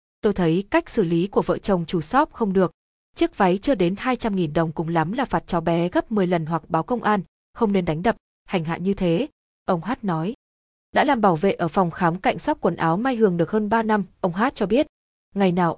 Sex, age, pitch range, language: female, 20-39, 175-225 Hz, Vietnamese